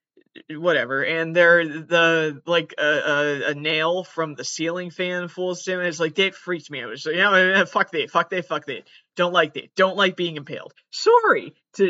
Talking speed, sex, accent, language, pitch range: 200 wpm, male, American, English, 155-195 Hz